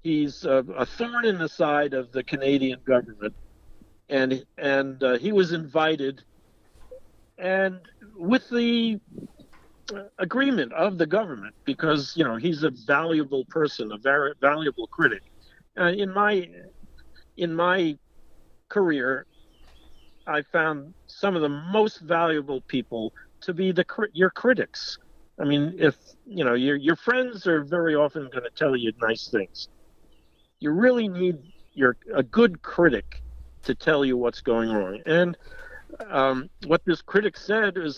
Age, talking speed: 50-69, 140 wpm